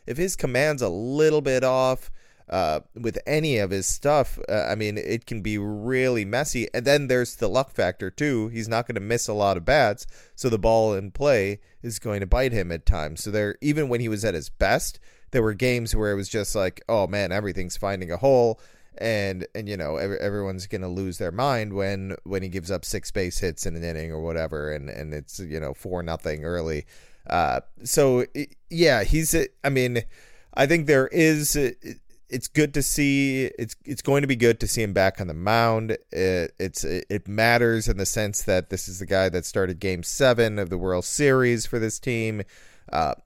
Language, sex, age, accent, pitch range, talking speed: English, male, 30-49, American, 95-125 Hz, 215 wpm